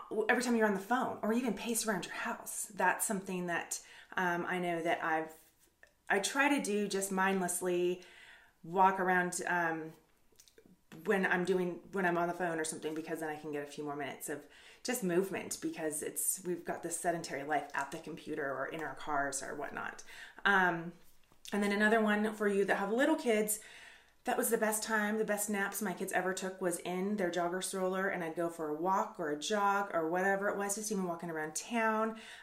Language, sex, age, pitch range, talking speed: English, female, 30-49, 170-215 Hz, 210 wpm